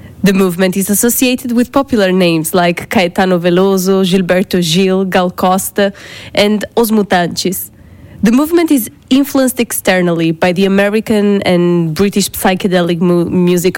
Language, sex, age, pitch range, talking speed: French, female, 20-39, 180-220 Hz, 125 wpm